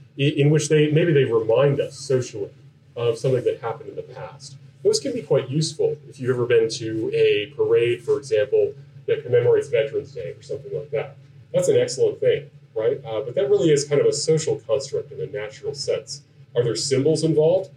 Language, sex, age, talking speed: English, male, 30-49, 205 wpm